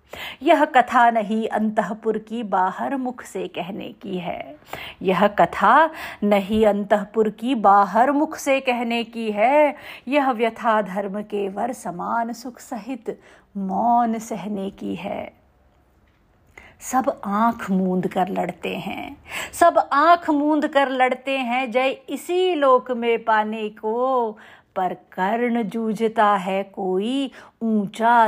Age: 50-69